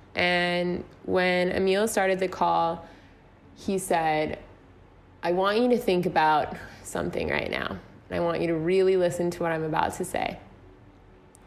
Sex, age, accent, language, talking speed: female, 20-39, American, English, 150 wpm